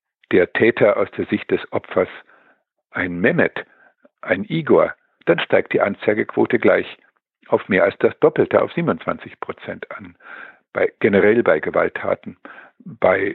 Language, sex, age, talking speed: German, male, 50-69, 130 wpm